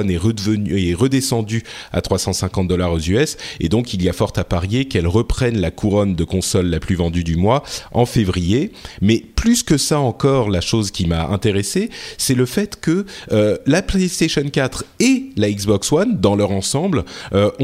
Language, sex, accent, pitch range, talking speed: French, male, French, 95-135 Hz, 190 wpm